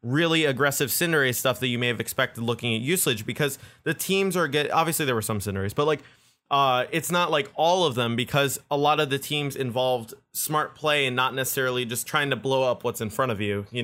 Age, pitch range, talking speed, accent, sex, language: 20-39, 120-150 Hz, 235 wpm, American, male, English